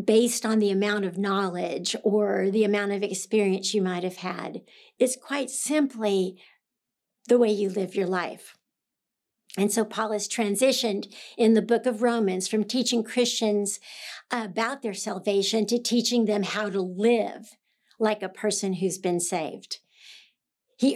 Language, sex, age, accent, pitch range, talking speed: English, female, 60-79, American, 200-240 Hz, 150 wpm